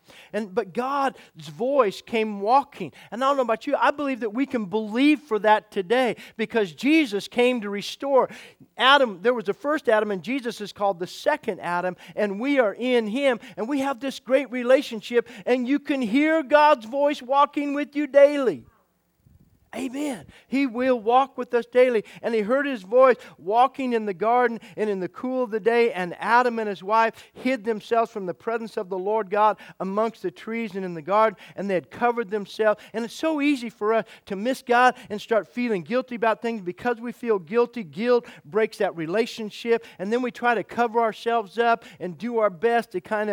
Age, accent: 40-59, American